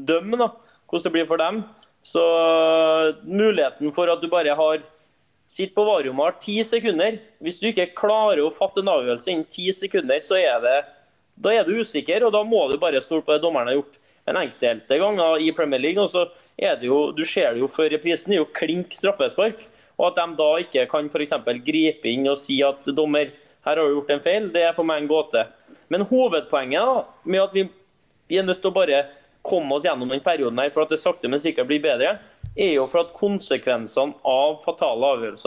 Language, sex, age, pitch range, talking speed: English, male, 20-39, 140-180 Hz, 210 wpm